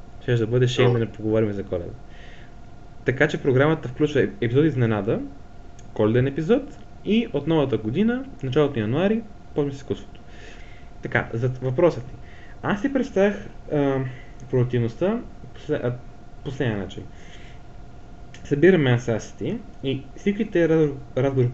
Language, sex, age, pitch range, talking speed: Bulgarian, male, 20-39, 115-150 Hz, 115 wpm